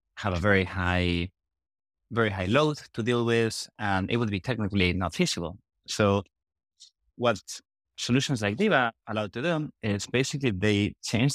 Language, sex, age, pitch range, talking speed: English, male, 30-49, 95-130 Hz, 155 wpm